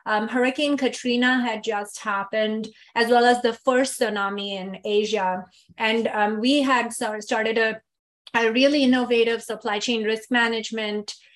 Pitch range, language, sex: 210-250 Hz, English, female